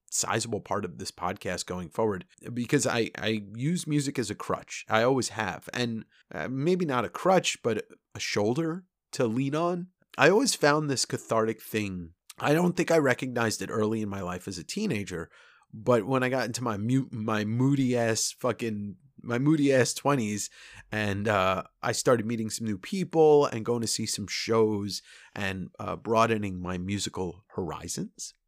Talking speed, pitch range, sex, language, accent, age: 170 wpm, 105-140 Hz, male, English, American, 30-49